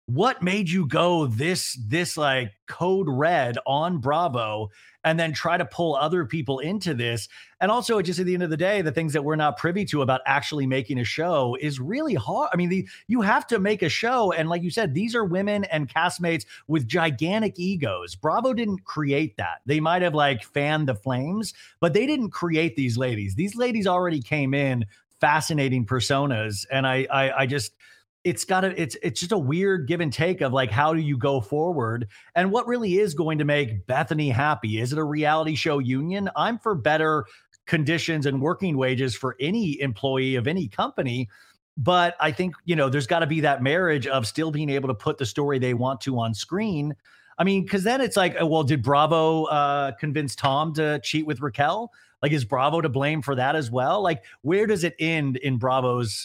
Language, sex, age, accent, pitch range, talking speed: English, male, 30-49, American, 135-175 Hz, 210 wpm